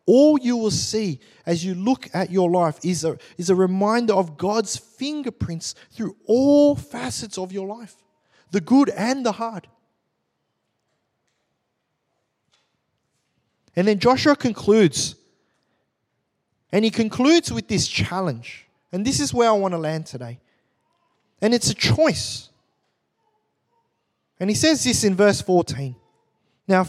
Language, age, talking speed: English, 20-39, 135 wpm